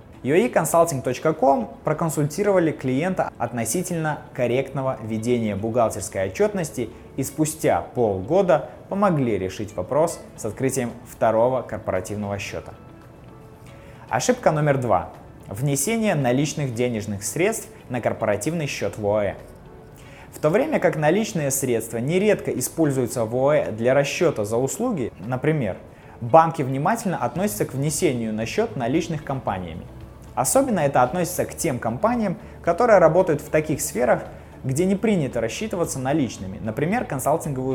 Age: 20-39